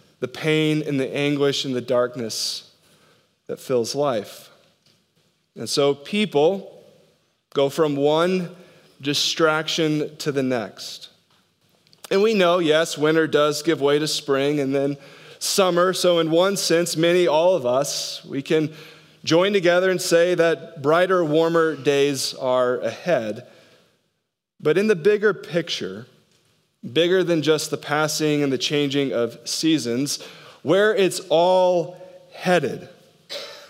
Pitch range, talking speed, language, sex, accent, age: 145-175 Hz, 130 wpm, English, male, American, 20-39